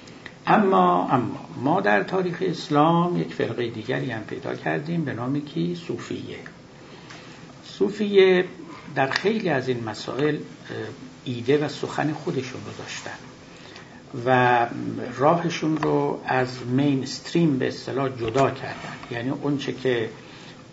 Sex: male